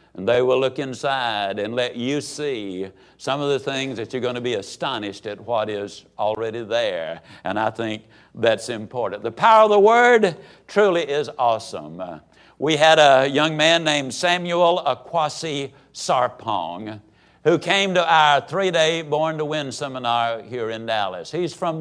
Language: English